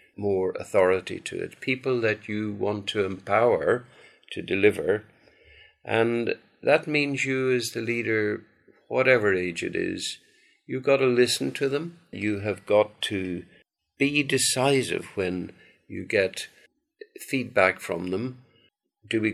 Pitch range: 105-140 Hz